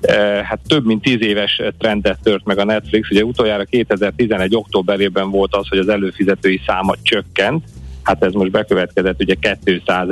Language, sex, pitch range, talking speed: Hungarian, male, 95-110 Hz, 160 wpm